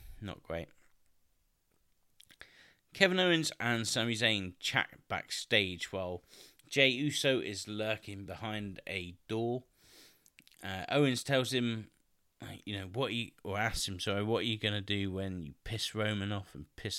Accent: British